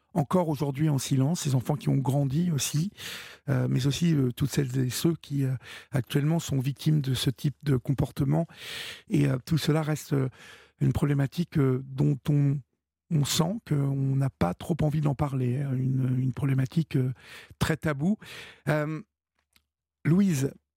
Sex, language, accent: male, French, French